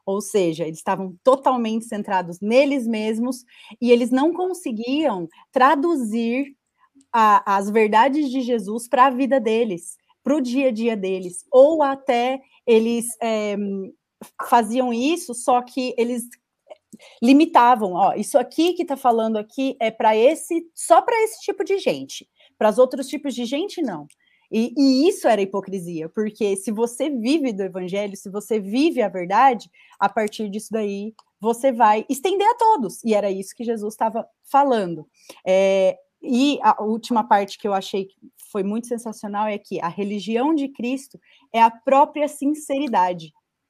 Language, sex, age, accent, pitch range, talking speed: Portuguese, female, 30-49, Brazilian, 210-275 Hz, 155 wpm